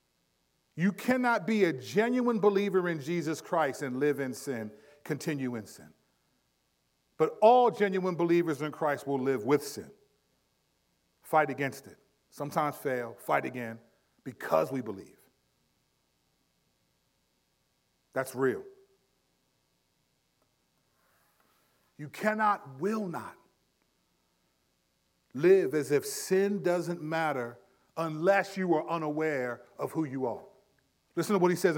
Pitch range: 145-195 Hz